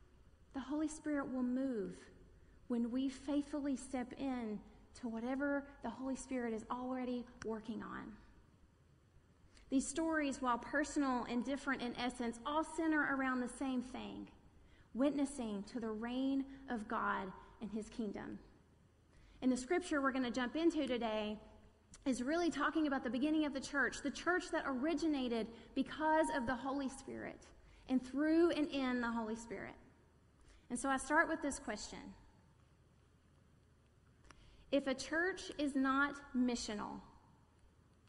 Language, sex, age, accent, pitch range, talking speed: English, female, 30-49, American, 240-300 Hz, 140 wpm